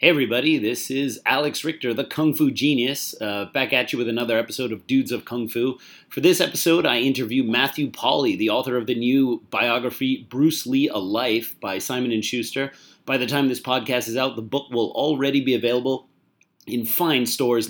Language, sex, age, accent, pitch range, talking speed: English, male, 30-49, American, 120-135 Hz, 200 wpm